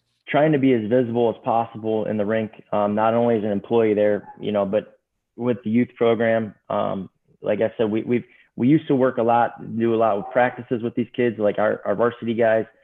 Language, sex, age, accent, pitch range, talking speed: English, male, 20-39, American, 110-125 Hz, 230 wpm